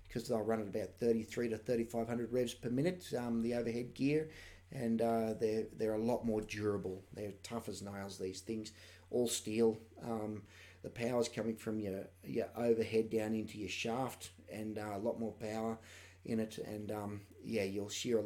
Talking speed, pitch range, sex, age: 185 wpm, 105-125 Hz, male, 30-49